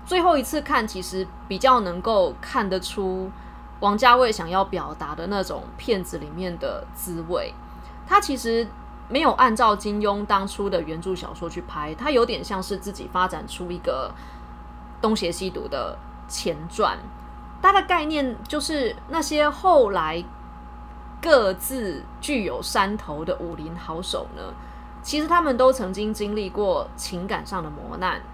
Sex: female